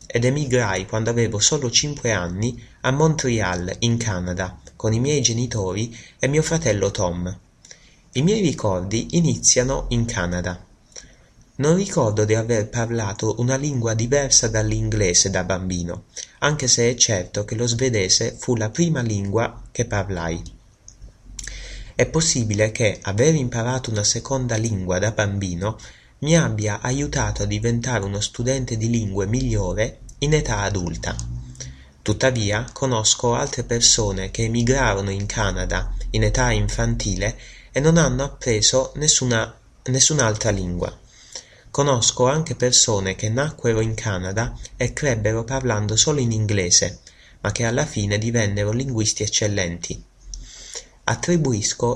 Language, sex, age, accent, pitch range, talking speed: Italian, male, 30-49, native, 100-125 Hz, 125 wpm